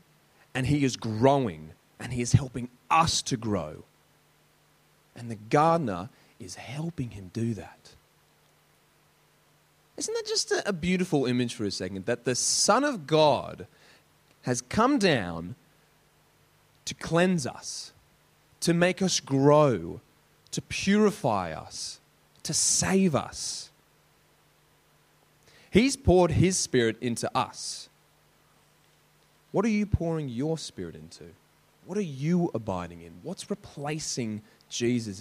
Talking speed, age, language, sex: 120 wpm, 30-49, English, male